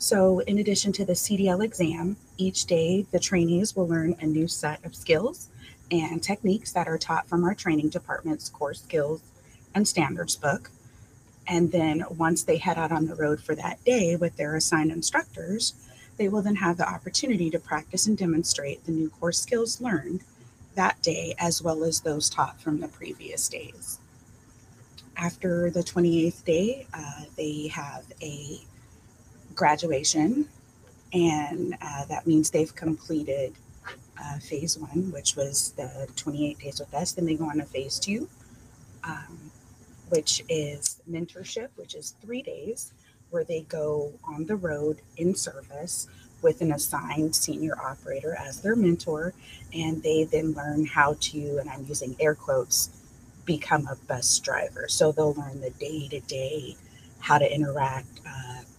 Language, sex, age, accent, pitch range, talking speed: English, female, 30-49, American, 145-175 Hz, 160 wpm